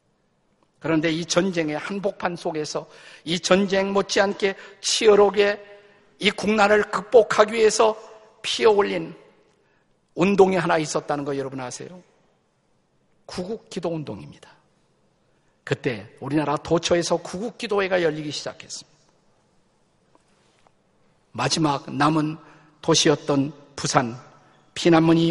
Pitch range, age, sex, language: 165-215 Hz, 50-69, male, Korean